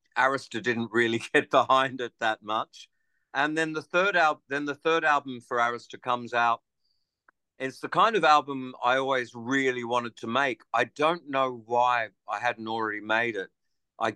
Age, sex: 50-69, male